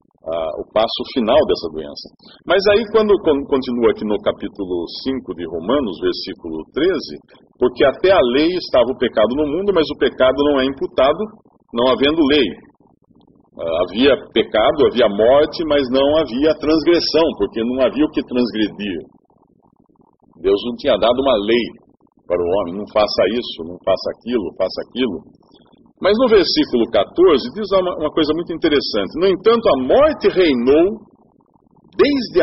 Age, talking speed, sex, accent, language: 50-69, 150 wpm, male, Brazilian, English